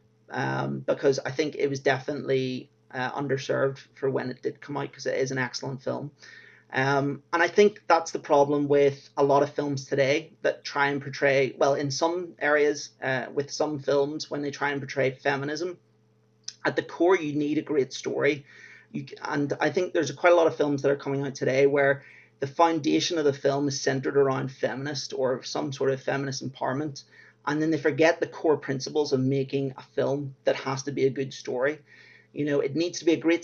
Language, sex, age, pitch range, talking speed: English, male, 30-49, 135-155 Hz, 210 wpm